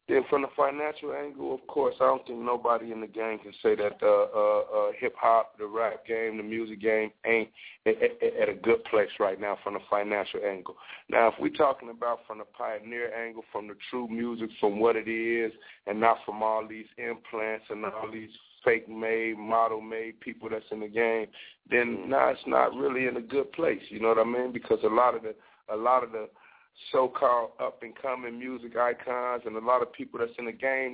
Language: English